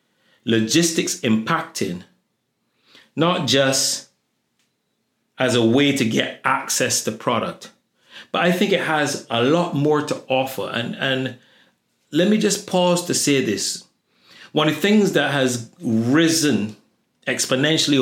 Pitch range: 125-165 Hz